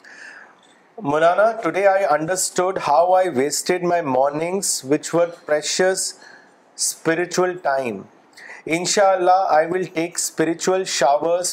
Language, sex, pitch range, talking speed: Urdu, male, 150-185 Hz, 105 wpm